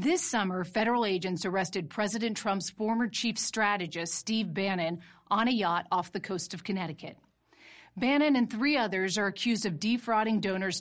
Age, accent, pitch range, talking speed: 40-59, American, 180-235 Hz, 160 wpm